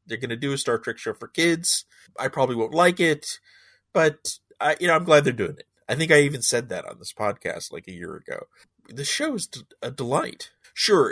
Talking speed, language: 230 wpm, English